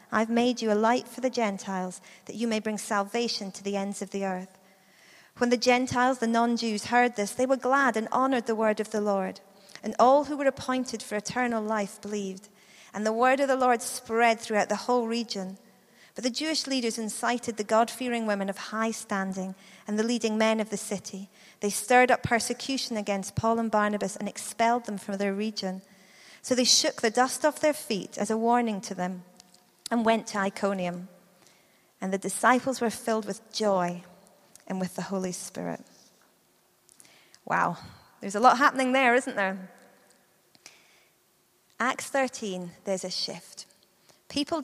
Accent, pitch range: British, 200-250 Hz